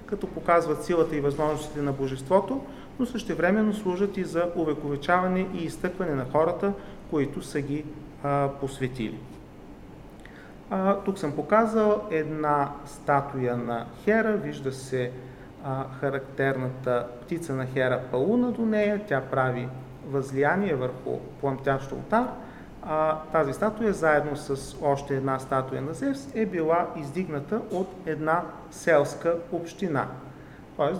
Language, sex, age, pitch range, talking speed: Bulgarian, male, 40-59, 140-190 Hz, 120 wpm